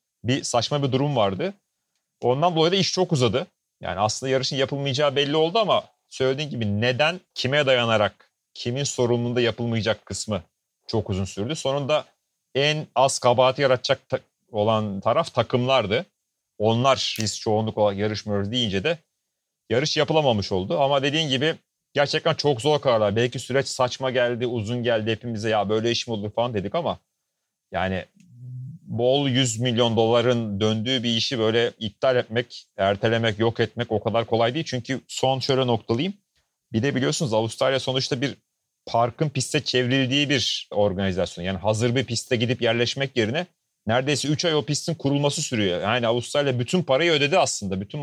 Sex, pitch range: male, 115-140 Hz